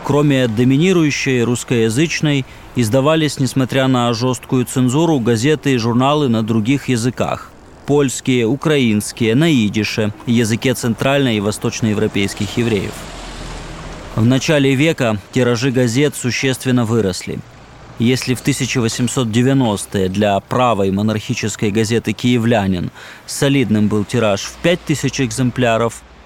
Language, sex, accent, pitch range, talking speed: Russian, male, native, 110-135 Hz, 105 wpm